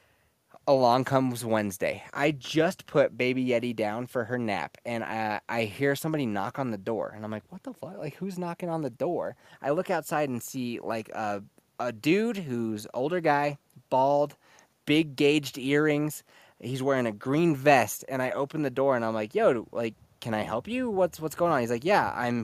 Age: 20-39